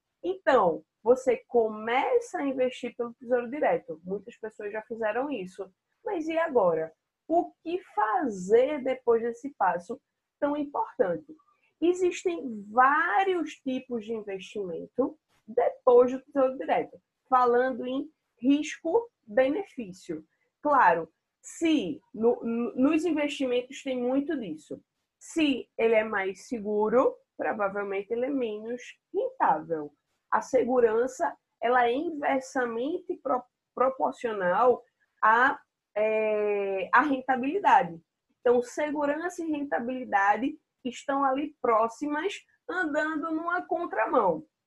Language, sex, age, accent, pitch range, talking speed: Portuguese, female, 20-39, Brazilian, 230-330 Hz, 95 wpm